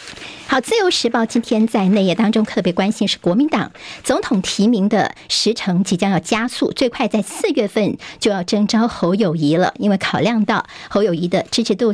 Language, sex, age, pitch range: Chinese, male, 50-69, 195-240 Hz